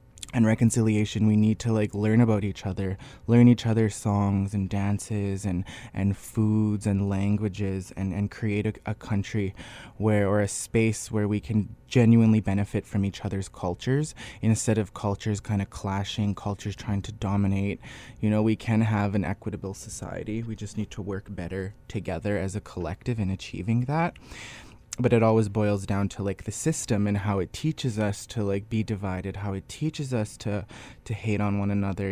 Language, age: English, 20-39